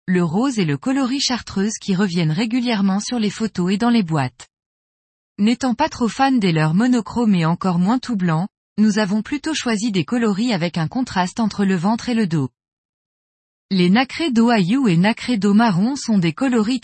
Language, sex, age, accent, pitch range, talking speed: French, female, 20-39, French, 180-245 Hz, 190 wpm